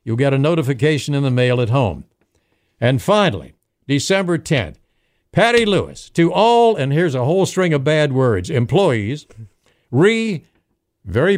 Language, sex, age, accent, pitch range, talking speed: English, male, 60-79, American, 145-210 Hz, 150 wpm